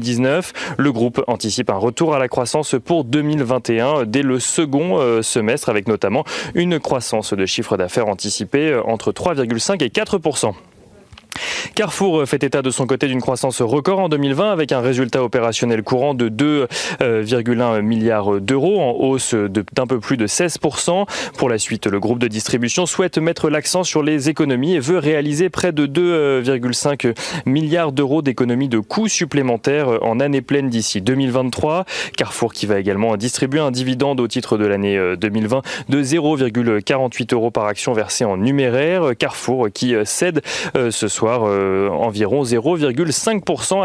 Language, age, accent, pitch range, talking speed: French, 30-49, French, 115-155 Hz, 150 wpm